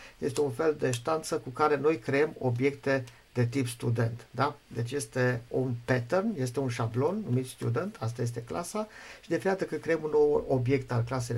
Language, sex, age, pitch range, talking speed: Romanian, male, 50-69, 120-150 Hz, 195 wpm